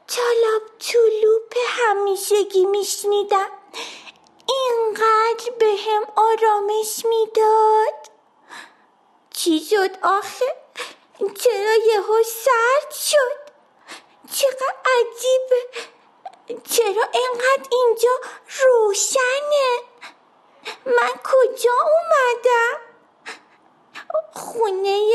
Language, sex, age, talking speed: Persian, female, 30-49, 60 wpm